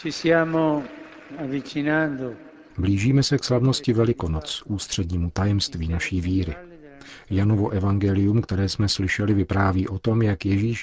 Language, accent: Czech, native